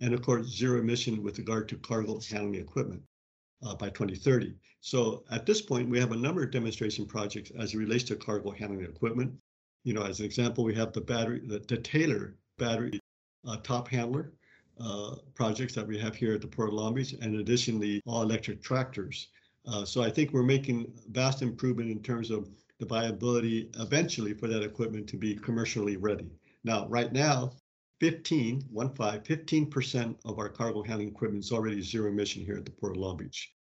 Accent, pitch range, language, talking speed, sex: American, 105-130 Hz, English, 190 wpm, male